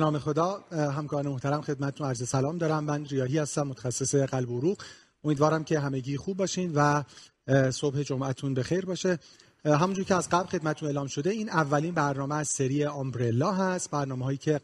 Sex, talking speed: male, 175 wpm